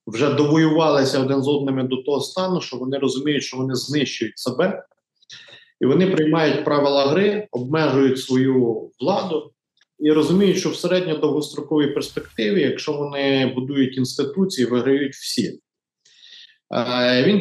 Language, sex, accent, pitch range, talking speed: Ukrainian, male, native, 130-165 Hz, 125 wpm